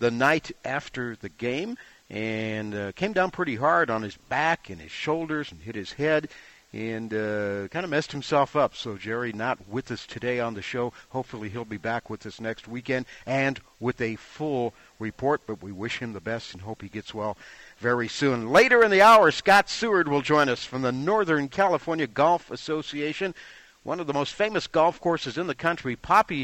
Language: English